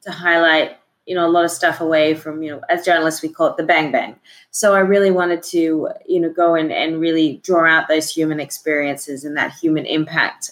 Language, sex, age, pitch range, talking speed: English, female, 20-39, 165-225 Hz, 230 wpm